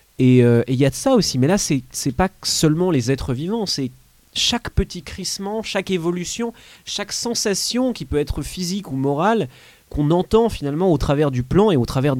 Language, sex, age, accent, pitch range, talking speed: French, male, 30-49, French, 120-175 Hz, 195 wpm